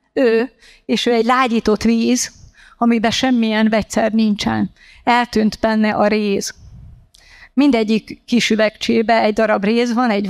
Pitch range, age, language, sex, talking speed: 210-240 Hz, 30-49, Hungarian, female, 130 wpm